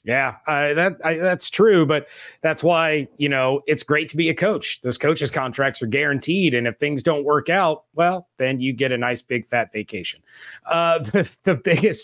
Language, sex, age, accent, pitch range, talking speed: English, male, 30-49, American, 130-155 Hz, 195 wpm